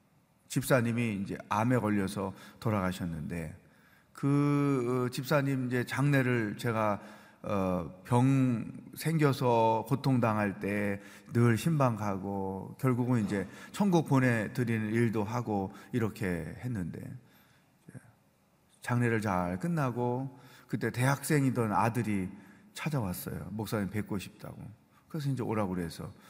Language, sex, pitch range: Korean, male, 105-135 Hz